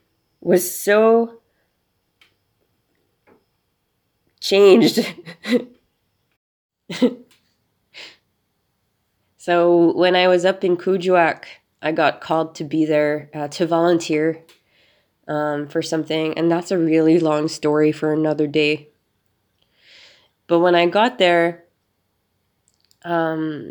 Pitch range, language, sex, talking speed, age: 115-175 Hz, English, female, 95 wpm, 20-39